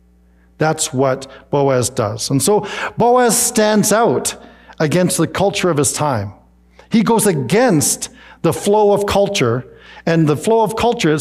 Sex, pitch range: male, 125-200 Hz